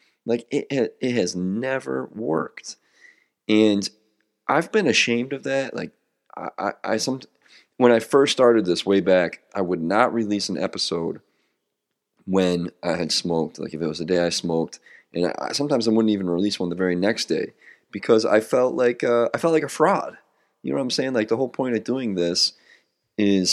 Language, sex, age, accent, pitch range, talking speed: English, male, 30-49, American, 95-120 Hz, 195 wpm